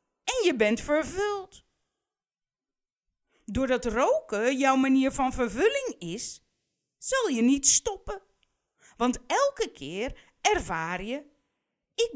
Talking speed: 105 wpm